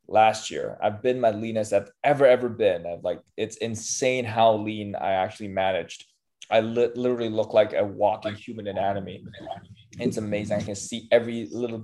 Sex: male